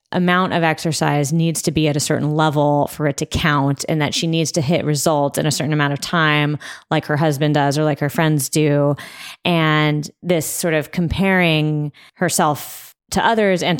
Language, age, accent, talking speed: English, 20-39, American, 195 wpm